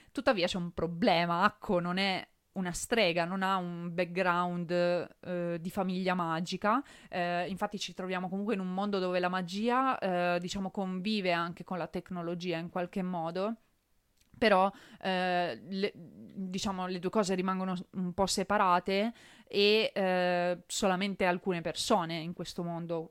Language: Italian